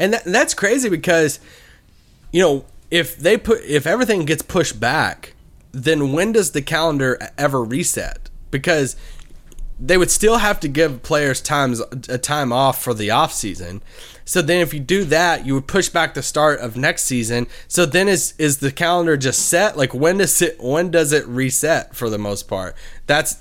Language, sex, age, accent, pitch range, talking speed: English, male, 20-39, American, 120-165 Hz, 185 wpm